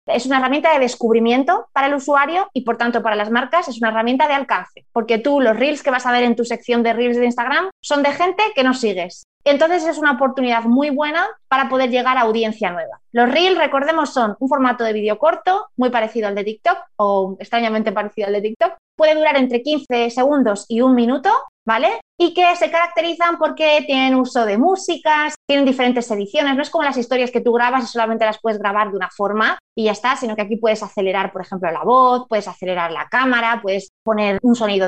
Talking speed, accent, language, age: 220 wpm, Spanish, Spanish, 20-39